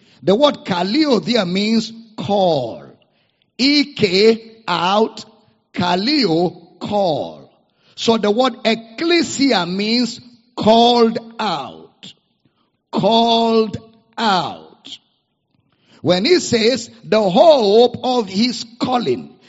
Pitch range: 195-245 Hz